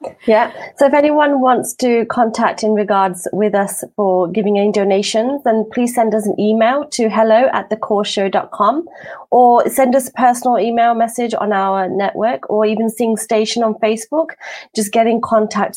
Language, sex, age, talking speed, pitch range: Punjabi, female, 30-49, 160 wpm, 195-240 Hz